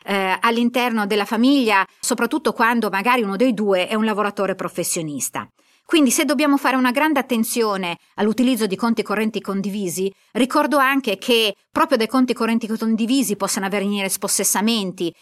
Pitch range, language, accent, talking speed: 215-260 Hz, Italian, native, 145 wpm